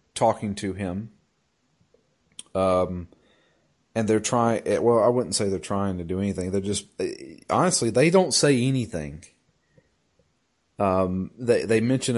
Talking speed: 140 wpm